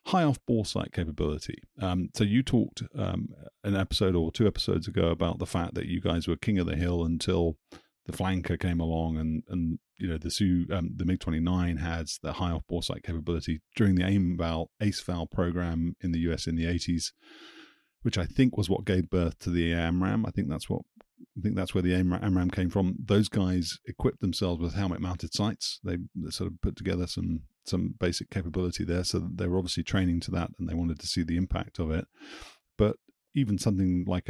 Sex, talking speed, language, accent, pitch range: male, 210 wpm, English, British, 85-100 Hz